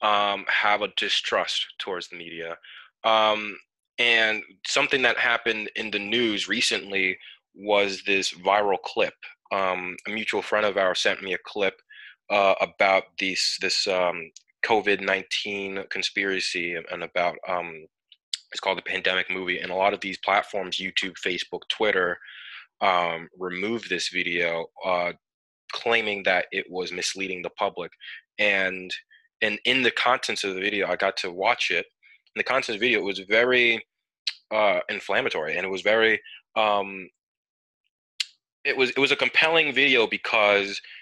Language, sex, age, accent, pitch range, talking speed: English, male, 20-39, American, 90-115 Hz, 150 wpm